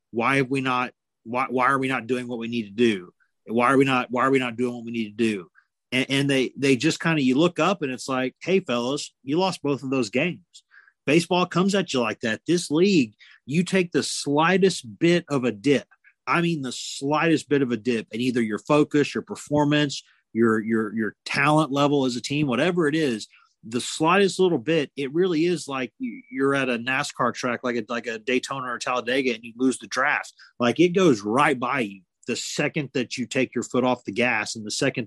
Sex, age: male, 30-49